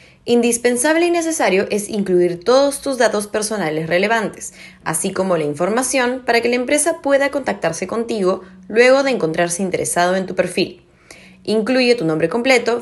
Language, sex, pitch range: Spanish, female, 165-245 Hz